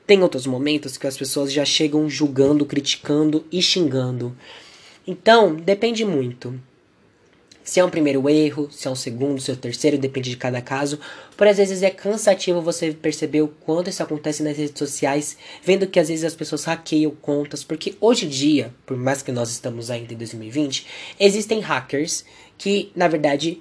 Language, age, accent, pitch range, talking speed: Portuguese, 10-29, Brazilian, 130-160 Hz, 185 wpm